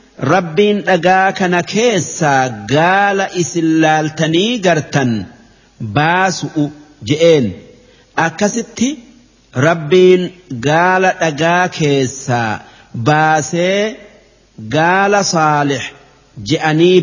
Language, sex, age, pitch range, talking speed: Arabic, male, 50-69, 145-185 Hz, 55 wpm